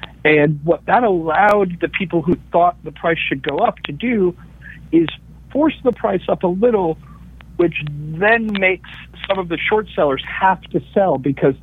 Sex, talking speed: male, 175 wpm